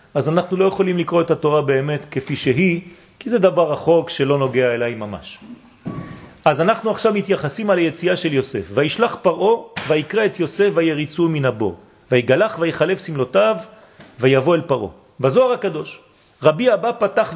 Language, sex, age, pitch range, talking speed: French, male, 40-59, 165-240 Hz, 150 wpm